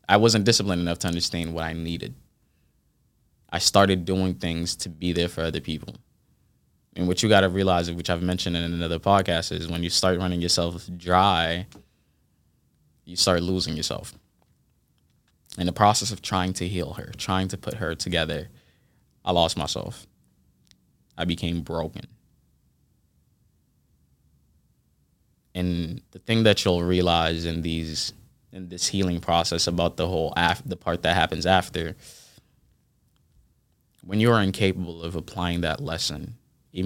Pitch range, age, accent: 80-95 Hz, 20-39, American